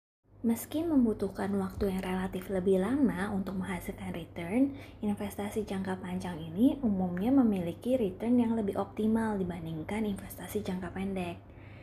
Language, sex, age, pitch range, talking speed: Indonesian, female, 20-39, 185-225 Hz, 120 wpm